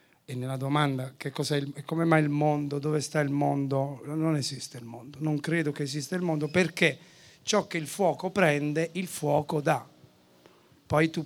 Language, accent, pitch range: Italian, native, 135-150 Hz